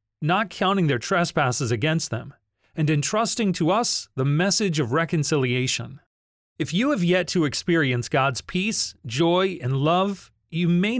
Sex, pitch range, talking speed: male, 130-180 Hz, 145 wpm